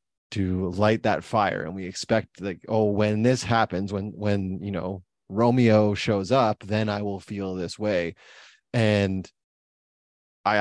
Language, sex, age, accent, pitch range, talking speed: English, male, 30-49, American, 95-120 Hz, 155 wpm